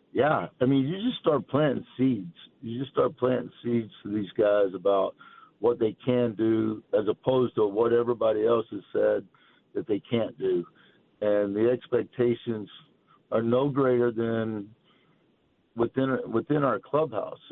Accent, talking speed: American, 150 wpm